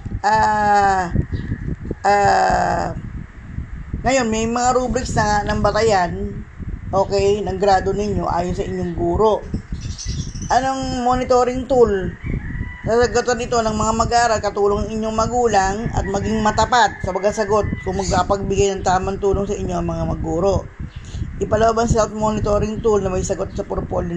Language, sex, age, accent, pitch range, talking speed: Filipino, female, 20-39, native, 180-225 Hz, 140 wpm